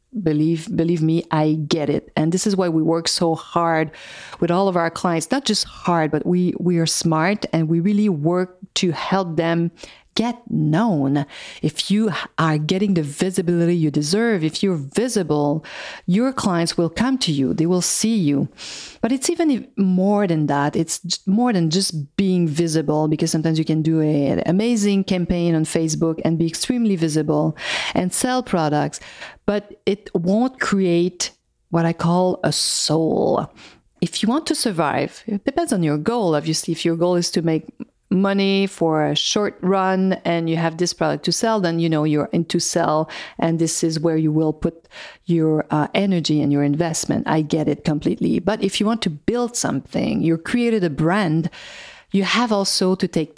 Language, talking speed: English, 185 wpm